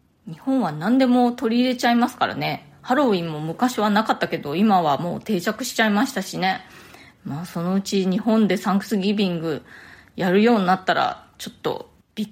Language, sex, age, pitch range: Japanese, female, 20-39, 190-245 Hz